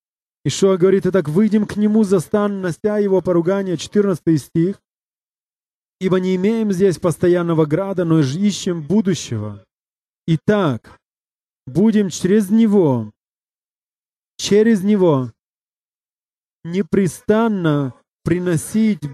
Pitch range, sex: 170-205 Hz, male